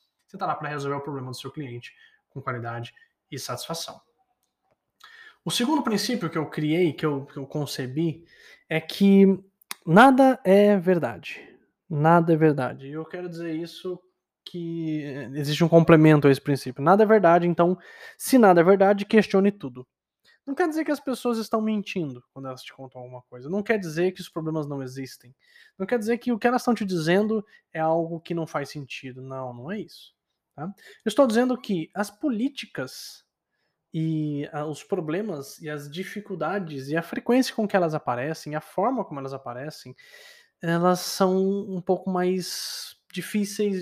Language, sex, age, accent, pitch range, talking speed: Portuguese, male, 20-39, Brazilian, 150-200 Hz, 175 wpm